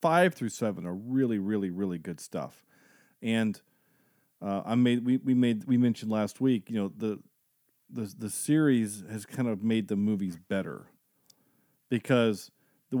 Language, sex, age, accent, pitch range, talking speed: English, male, 40-59, American, 105-140 Hz, 160 wpm